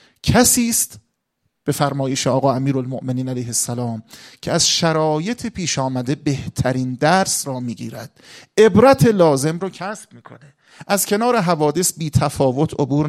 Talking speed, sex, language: 130 wpm, male, Persian